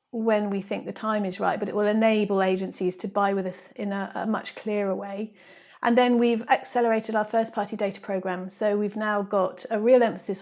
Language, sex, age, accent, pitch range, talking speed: English, female, 40-59, British, 200-225 Hz, 220 wpm